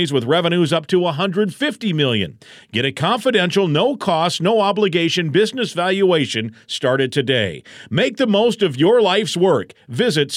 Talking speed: 135 wpm